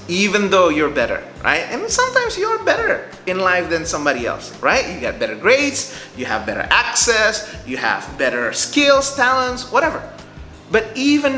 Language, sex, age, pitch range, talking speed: English, male, 30-49, 150-255 Hz, 165 wpm